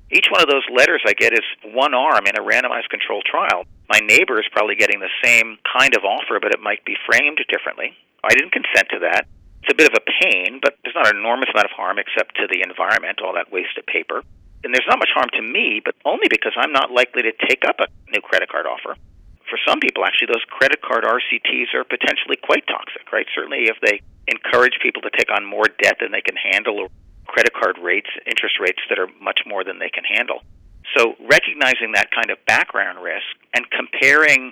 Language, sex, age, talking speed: English, male, 40-59, 225 wpm